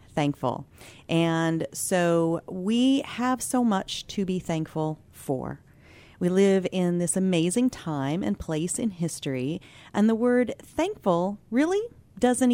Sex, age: female, 40-59